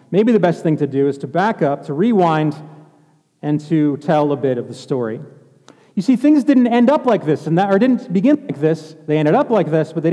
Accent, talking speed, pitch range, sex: American, 250 wpm, 145-200 Hz, male